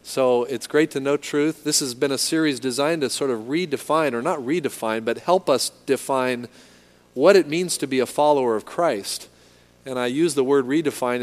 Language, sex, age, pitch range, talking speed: English, male, 40-59, 125-150 Hz, 205 wpm